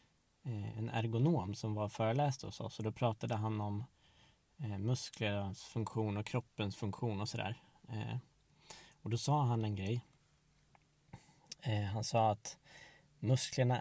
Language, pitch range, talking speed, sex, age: Swedish, 110-135 Hz, 125 wpm, male, 20-39